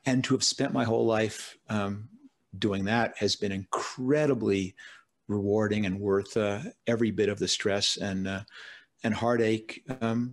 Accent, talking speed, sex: American, 155 wpm, male